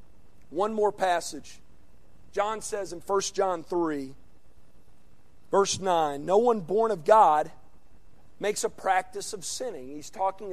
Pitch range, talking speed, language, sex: 190-285 Hz, 130 wpm, English, male